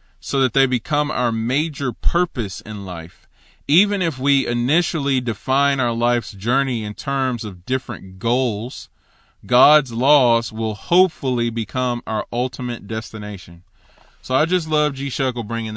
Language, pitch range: English, 110-145 Hz